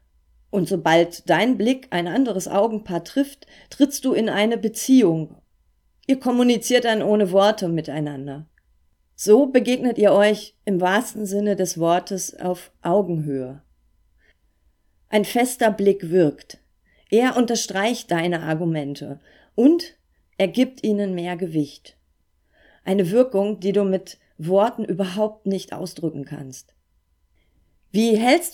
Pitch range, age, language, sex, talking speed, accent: 160-210 Hz, 40-59, German, female, 120 wpm, German